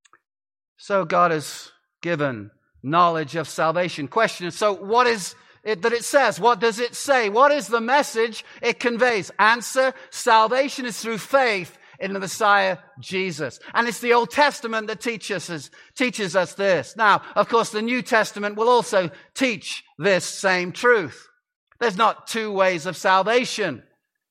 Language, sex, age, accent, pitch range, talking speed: English, male, 50-69, British, 180-225 Hz, 150 wpm